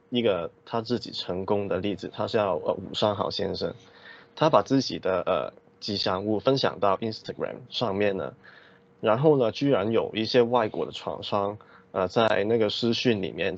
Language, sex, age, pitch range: Chinese, male, 20-39, 95-120 Hz